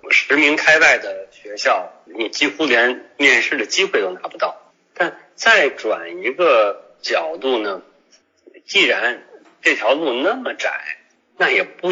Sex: male